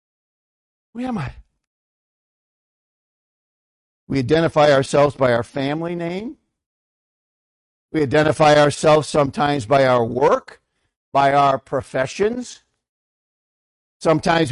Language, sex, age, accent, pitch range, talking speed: English, male, 50-69, American, 125-175 Hz, 85 wpm